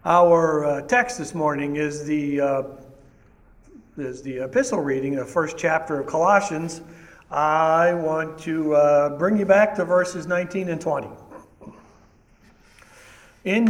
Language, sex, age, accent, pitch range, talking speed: English, male, 60-79, American, 135-185 Hz, 125 wpm